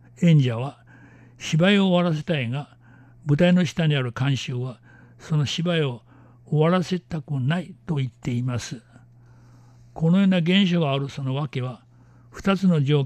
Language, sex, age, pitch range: Japanese, male, 60-79, 120-165 Hz